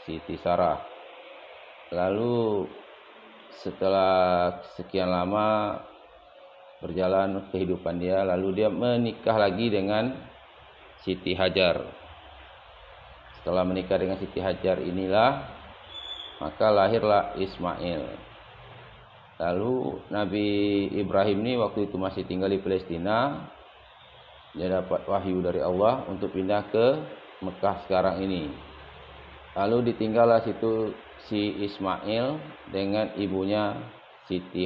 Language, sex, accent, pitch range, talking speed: Indonesian, male, native, 95-110 Hz, 95 wpm